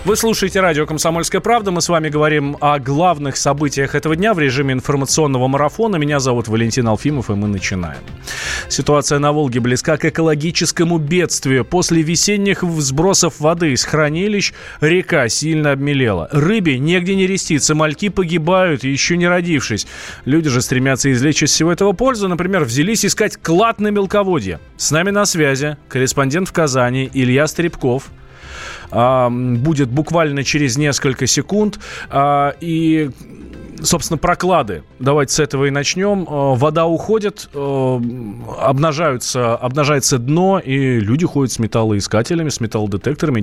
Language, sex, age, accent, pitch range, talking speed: Russian, male, 20-39, native, 125-170 Hz, 135 wpm